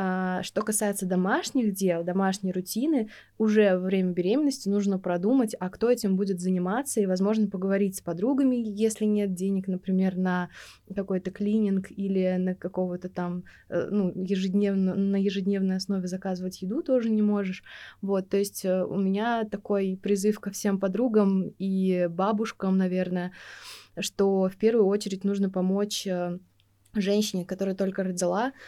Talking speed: 140 wpm